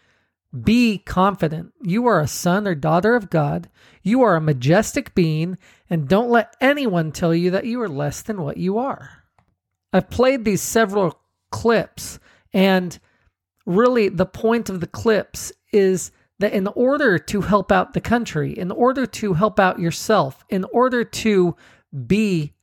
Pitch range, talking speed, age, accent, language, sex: 165-205 Hz, 160 wpm, 40-59, American, English, male